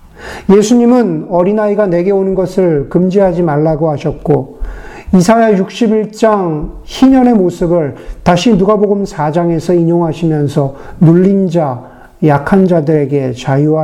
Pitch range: 155-200 Hz